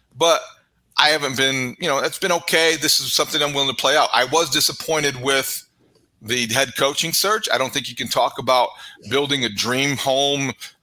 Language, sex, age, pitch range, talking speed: English, male, 40-59, 120-155 Hz, 200 wpm